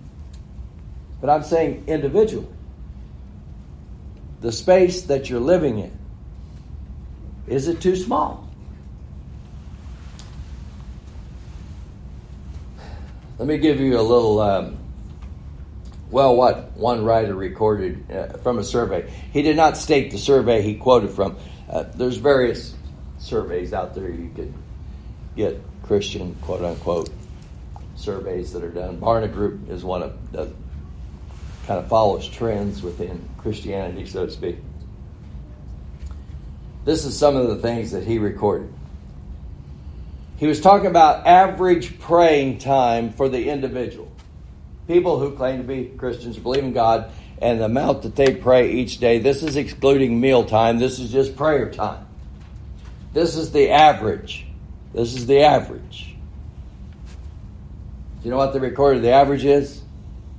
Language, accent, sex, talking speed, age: English, American, male, 135 wpm, 60-79